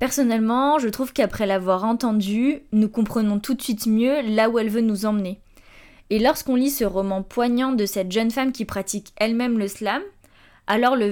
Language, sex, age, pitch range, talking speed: French, female, 20-39, 200-250 Hz, 190 wpm